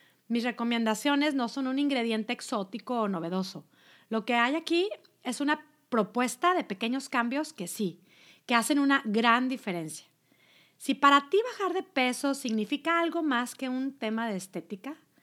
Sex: female